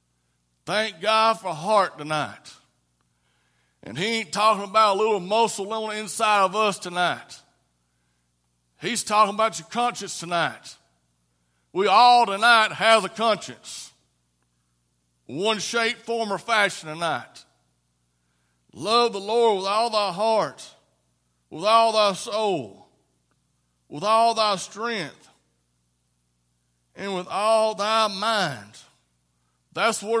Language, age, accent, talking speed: English, 60-79, American, 115 wpm